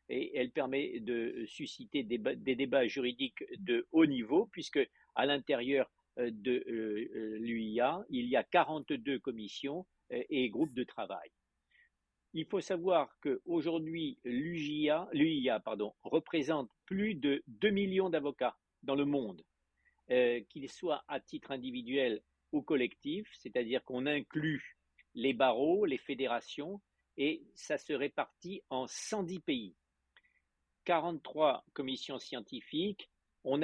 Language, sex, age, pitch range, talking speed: English, male, 50-69, 120-170 Hz, 115 wpm